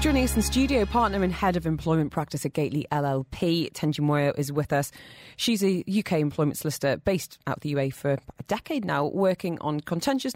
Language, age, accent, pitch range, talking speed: English, 30-49, British, 145-195 Hz, 205 wpm